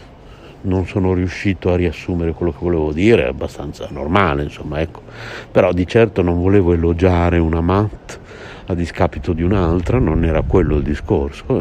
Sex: male